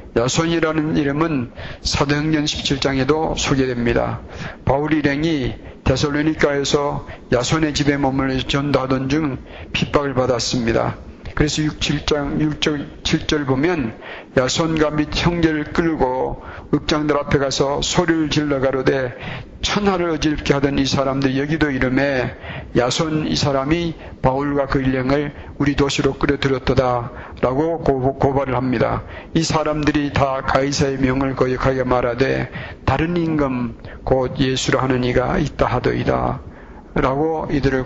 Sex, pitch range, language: male, 130-150 Hz, Korean